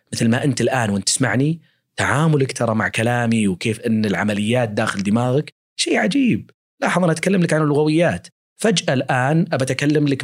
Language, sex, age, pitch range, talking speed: Arabic, male, 30-49, 120-165 Hz, 165 wpm